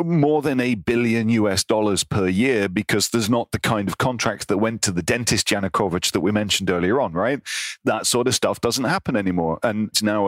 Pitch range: 95-115 Hz